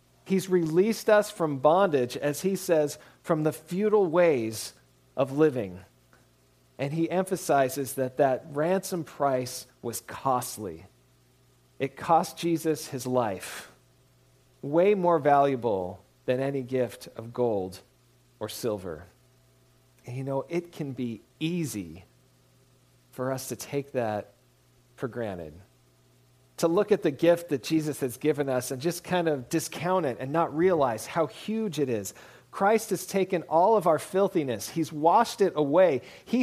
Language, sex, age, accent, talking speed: English, male, 40-59, American, 145 wpm